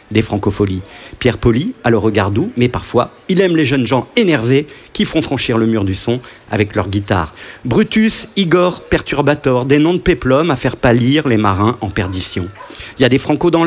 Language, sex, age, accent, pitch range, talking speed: French, male, 50-69, French, 105-155 Hz, 200 wpm